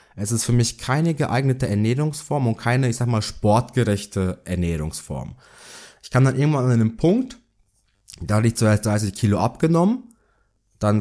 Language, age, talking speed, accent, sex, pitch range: German, 20-39, 160 wpm, German, male, 100-120 Hz